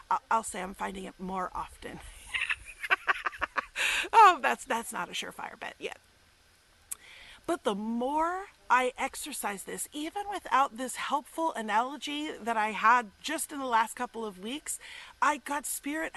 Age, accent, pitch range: 40-59, American, 220-285 Hz